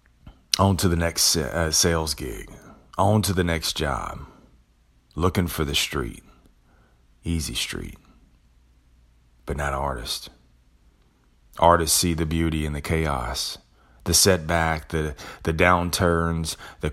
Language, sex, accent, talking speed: English, male, American, 120 wpm